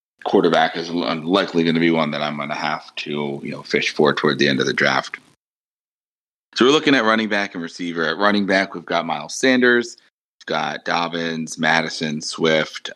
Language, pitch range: English, 75-95 Hz